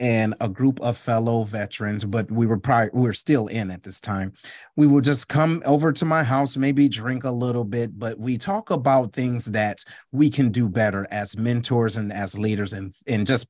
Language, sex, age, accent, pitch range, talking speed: English, male, 30-49, American, 115-180 Hz, 215 wpm